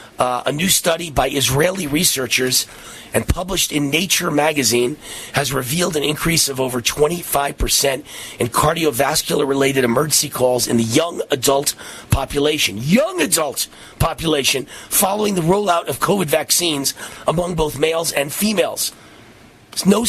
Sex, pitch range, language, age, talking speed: male, 125-155 Hz, English, 40-59, 130 wpm